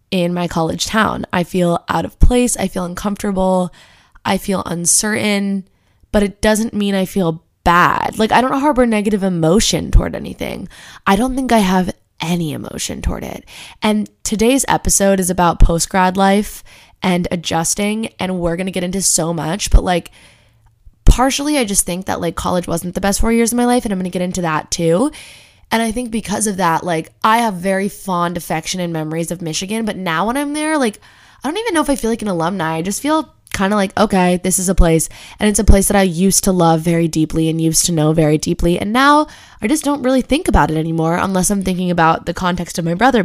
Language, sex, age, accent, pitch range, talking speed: English, female, 20-39, American, 170-215 Hz, 220 wpm